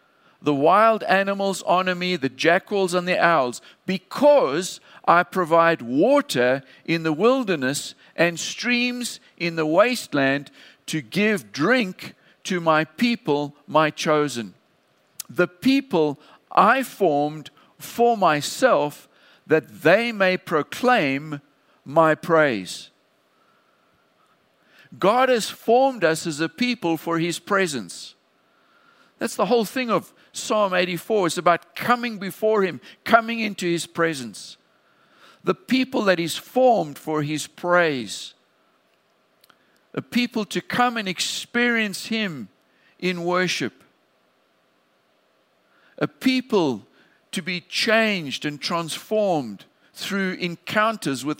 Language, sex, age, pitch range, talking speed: English, male, 50-69, 155-225 Hz, 110 wpm